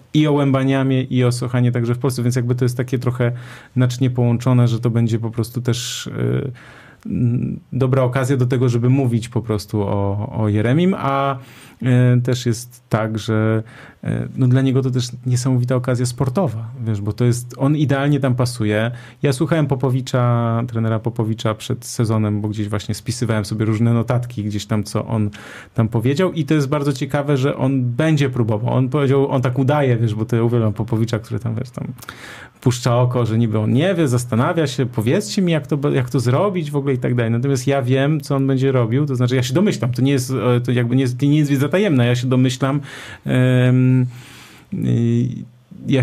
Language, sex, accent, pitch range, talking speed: Polish, male, native, 115-135 Hz, 195 wpm